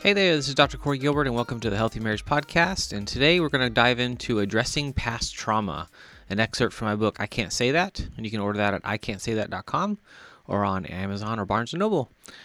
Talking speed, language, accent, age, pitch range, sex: 220 wpm, English, American, 30-49, 105-135 Hz, male